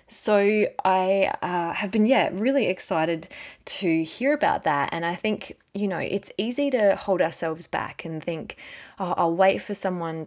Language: English